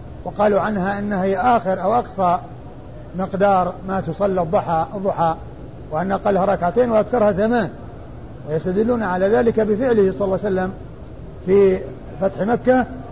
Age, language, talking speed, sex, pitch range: 50-69, Arabic, 130 wpm, male, 175-215 Hz